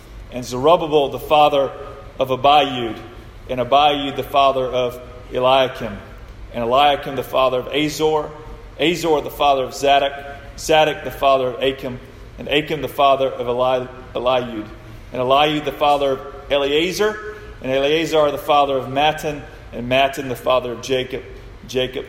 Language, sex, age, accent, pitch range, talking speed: English, male, 40-59, American, 115-150 Hz, 145 wpm